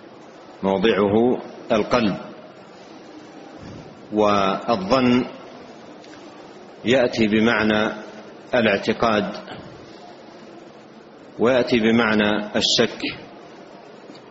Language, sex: Arabic, male